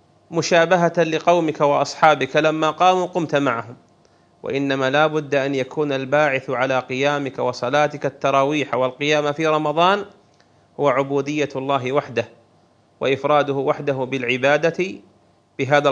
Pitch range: 135-165 Hz